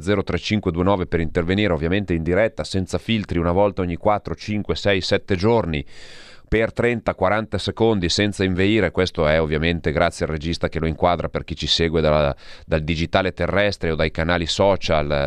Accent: native